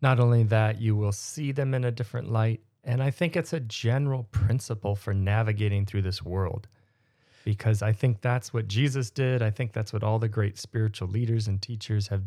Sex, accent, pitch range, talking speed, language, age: male, American, 105-125 Hz, 205 wpm, English, 30-49